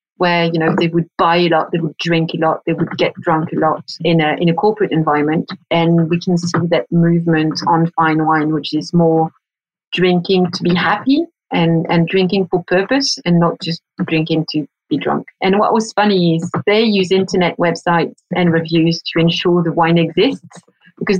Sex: female